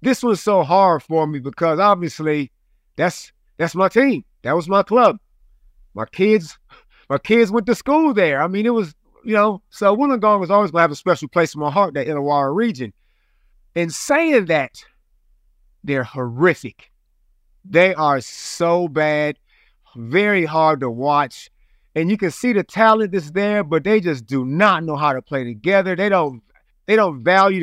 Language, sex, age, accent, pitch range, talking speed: English, male, 30-49, American, 145-200 Hz, 180 wpm